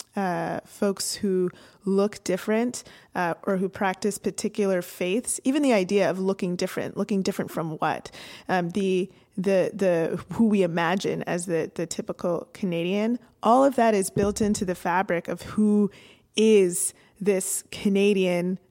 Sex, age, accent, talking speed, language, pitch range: female, 20-39, American, 150 wpm, English, 180-210 Hz